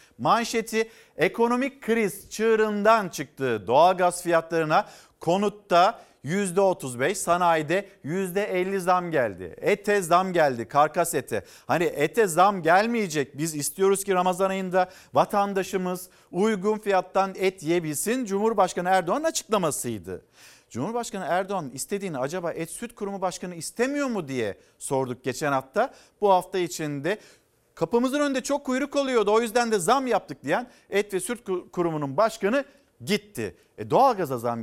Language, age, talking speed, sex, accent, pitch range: Turkish, 50-69, 130 wpm, male, native, 155-215 Hz